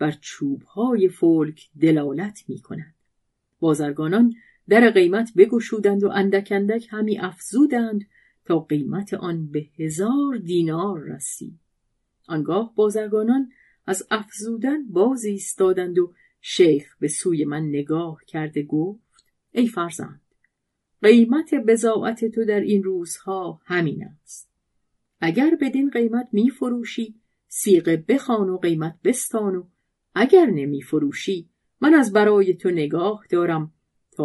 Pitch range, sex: 160-225 Hz, female